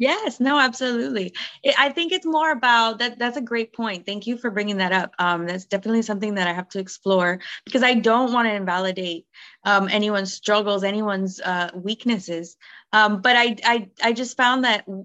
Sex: female